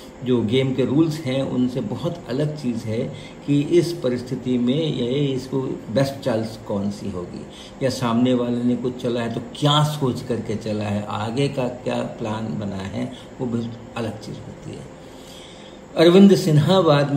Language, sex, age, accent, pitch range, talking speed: Hindi, male, 50-69, native, 105-125 Hz, 170 wpm